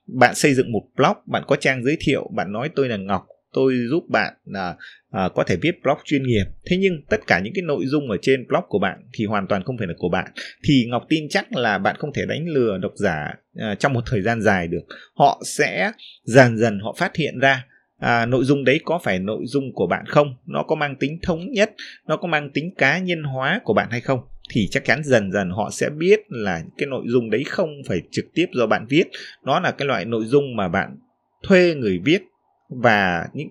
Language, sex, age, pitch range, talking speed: Vietnamese, male, 20-39, 115-155 Hz, 235 wpm